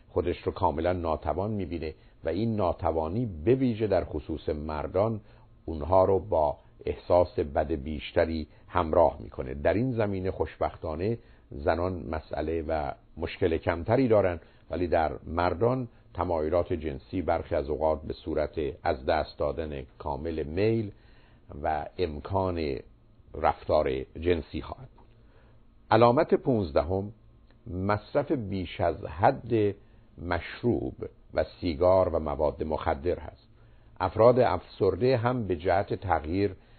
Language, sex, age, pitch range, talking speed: Persian, male, 50-69, 85-115 Hz, 115 wpm